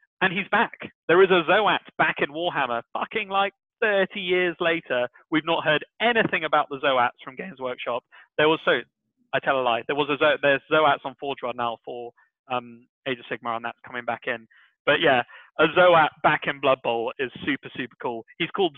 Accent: British